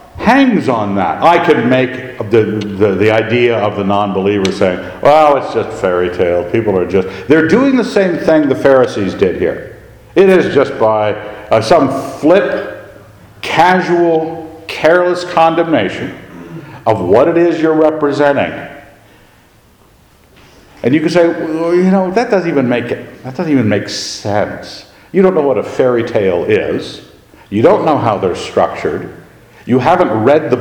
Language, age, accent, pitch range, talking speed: English, 60-79, American, 110-170 Hz, 160 wpm